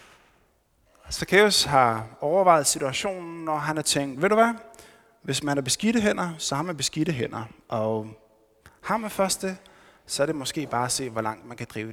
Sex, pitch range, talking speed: male, 135-195 Hz, 190 wpm